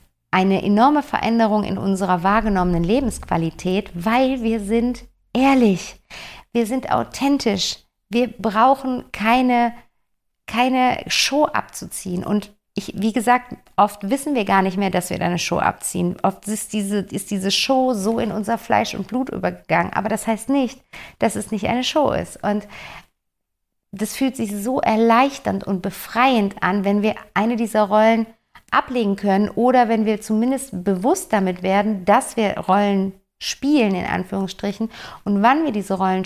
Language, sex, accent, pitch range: German, female, German, 190-230 Hz